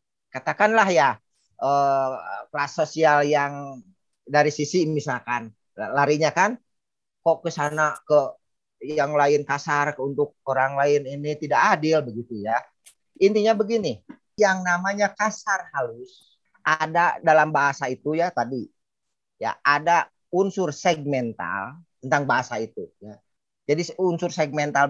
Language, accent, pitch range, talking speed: Indonesian, native, 140-200 Hz, 115 wpm